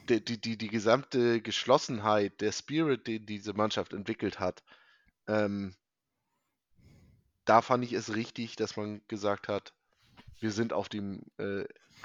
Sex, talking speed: male, 135 wpm